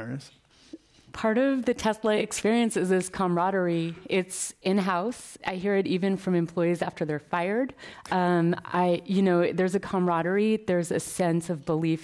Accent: American